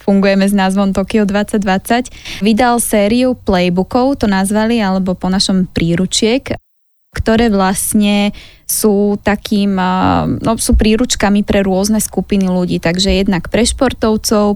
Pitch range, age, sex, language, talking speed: 195-220 Hz, 20-39, female, Slovak, 115 wpm